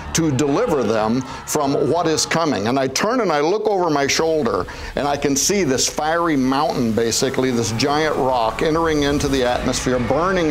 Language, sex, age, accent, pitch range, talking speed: English, male, 60-79, American, 130-160 Hz, 185 wpm